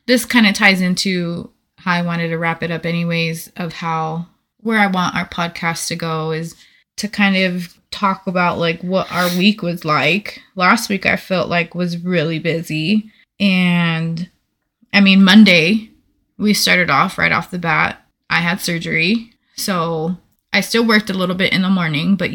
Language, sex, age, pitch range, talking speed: English, female, 20-39, 175-200 Hz, 180 wpm